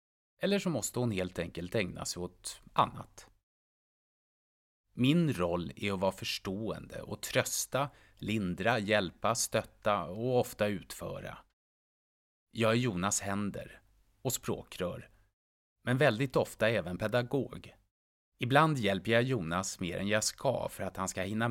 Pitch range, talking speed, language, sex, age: 90-120 Hz, 135 wpm, Swedish, male, 30-49